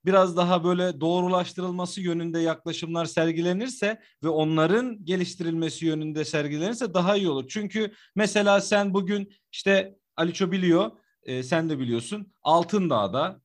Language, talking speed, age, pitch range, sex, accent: Turkish, 120 wpm, 40-59, 165-205 Hz, male, native